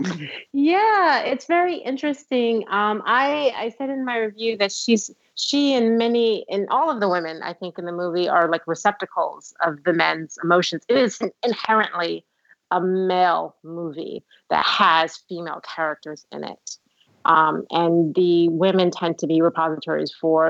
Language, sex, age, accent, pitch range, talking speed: English, female, 30-49, American, 160-210 Hz, 160 wpm